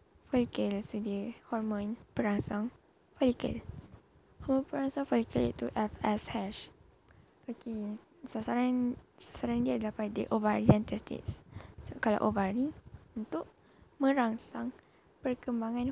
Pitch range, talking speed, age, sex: 210-245 Hz, 100 wpm, 10-29, female